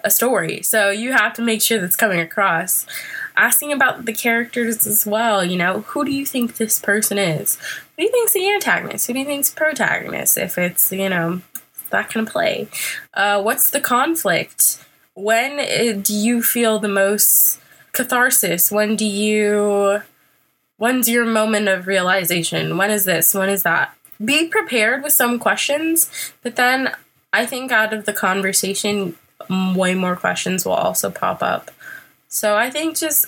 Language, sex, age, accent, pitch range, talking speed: English, female, 20-39, American, 190-250 Hz, 170 wpm